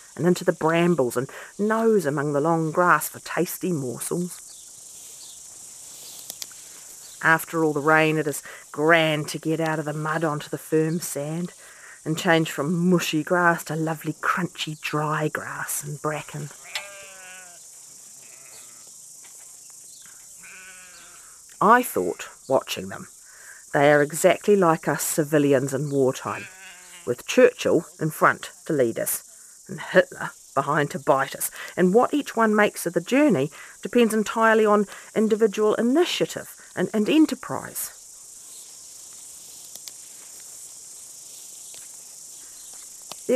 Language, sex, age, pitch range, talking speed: English, female, 40-59, 155-225 Hz, 115 wpm